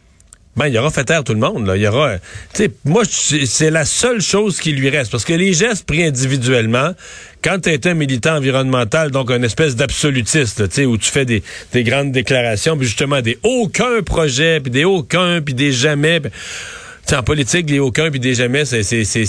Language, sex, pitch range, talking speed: French, male, 120-160 Hz, 210 wpm